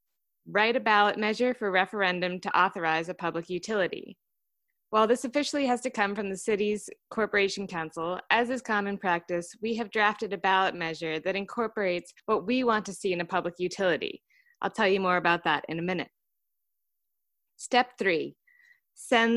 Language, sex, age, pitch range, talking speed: English, female, 20-39, 180-235 Hz, 170 wpm